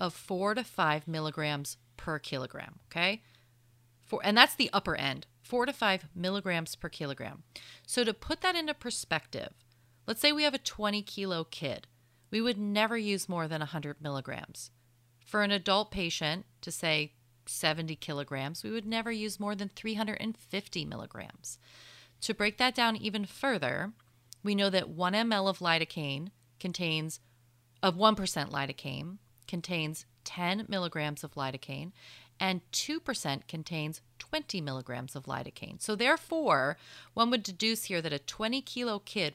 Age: 30-49